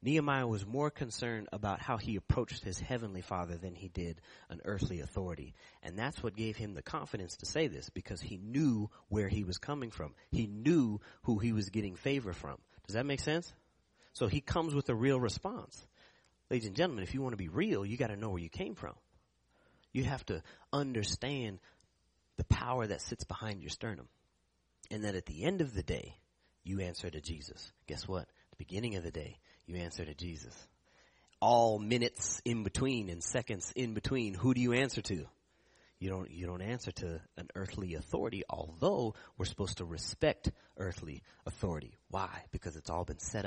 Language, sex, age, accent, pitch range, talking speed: English, male, 30-49, American, 90-125 Hz, 195 wpm